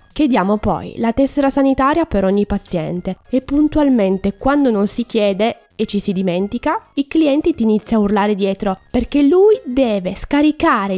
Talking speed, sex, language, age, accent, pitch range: 160 wpm, female, Italian, 20-39, native, 185-255 Hz